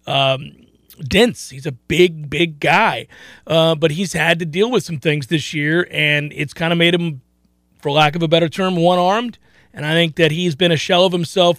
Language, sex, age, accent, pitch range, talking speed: English, male, 40-59, American, 160-195 Hz, 210 wpm